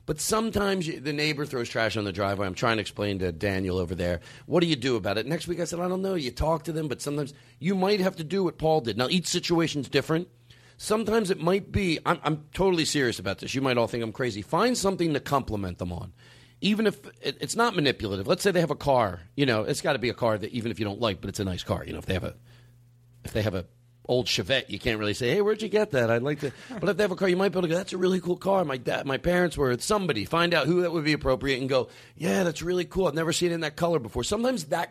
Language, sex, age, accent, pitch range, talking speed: English, male, 40-59, American, 120-180 Hz, 295 wpm